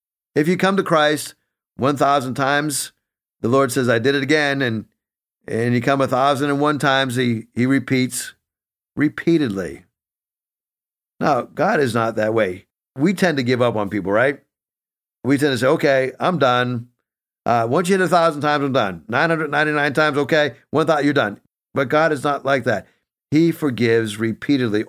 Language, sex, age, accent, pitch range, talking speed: English, male, 50-69, American, 120-155 Hz, 170 wpm